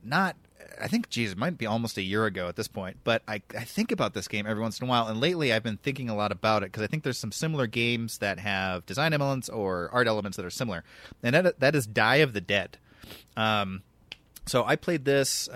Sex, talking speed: male, 250 wpm